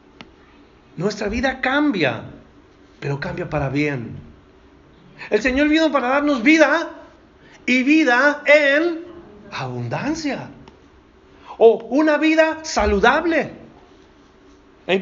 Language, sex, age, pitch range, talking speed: Spanish, male, 40-59, 195-285 Hz, 90 wpm